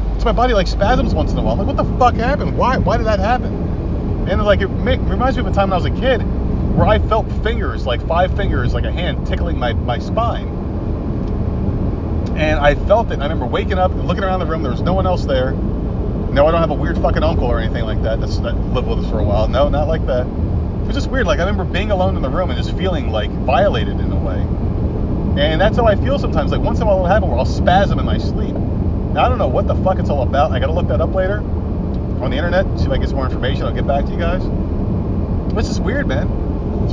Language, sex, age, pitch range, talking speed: English, male, 30-49, 85-100 Hz, 275 wpm